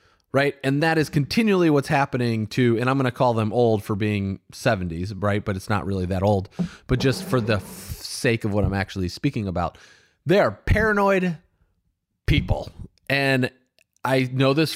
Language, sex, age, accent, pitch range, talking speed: English, male, 30-49, American, 100-145 Hz, 180 wpm